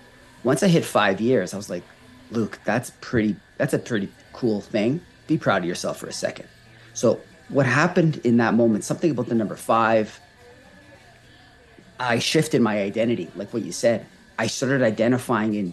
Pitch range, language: 110-135 Hz, English